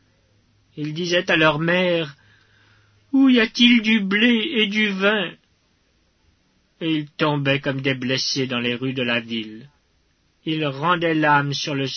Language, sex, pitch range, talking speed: French, male, 105-160 Hz, 160 wpm